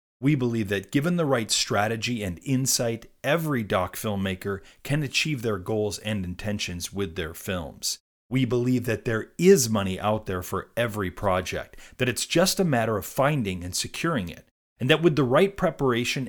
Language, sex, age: English, male, 30-49